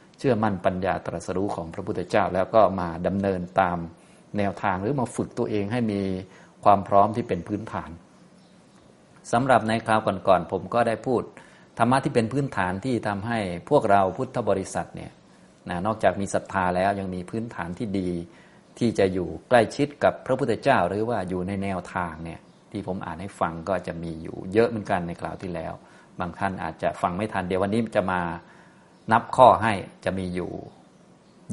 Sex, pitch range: male, 90-105 Hz